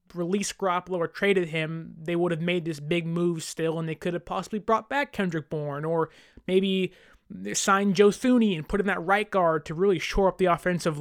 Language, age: English, 20-39